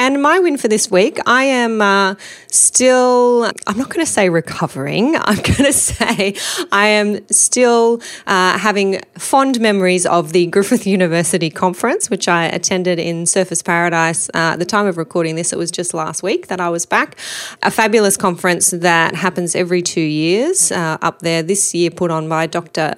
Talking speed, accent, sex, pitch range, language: 185 wpm, Australian, female, 165-195 Hz, English